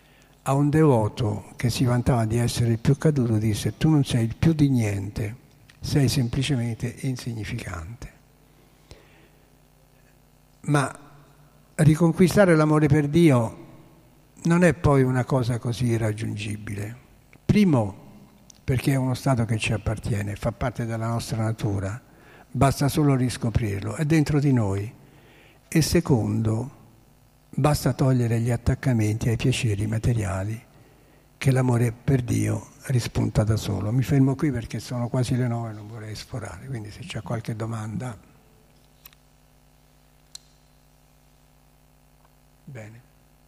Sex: male